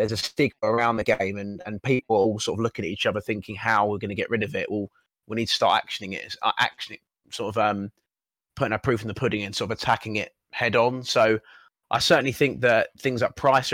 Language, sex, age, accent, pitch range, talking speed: English, male, 20-39, British, 105-120 Hz, 255 wpm